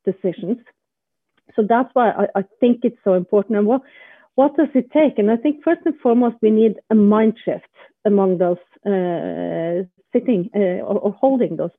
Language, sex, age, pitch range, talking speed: English, female, 40-59, 195-245 Hz, 185 wpm